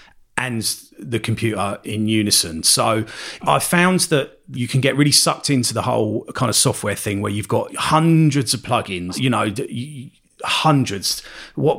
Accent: British